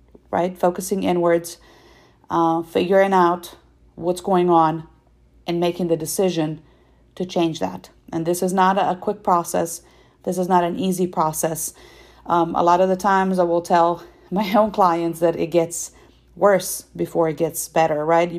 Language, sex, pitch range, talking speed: English, female, 165-190 Hz, 165 wpm